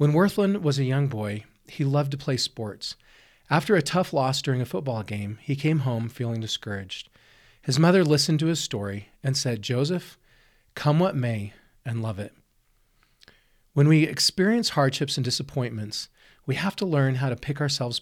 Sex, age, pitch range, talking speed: male, 40-59, 115-150 Hz, 175 wpm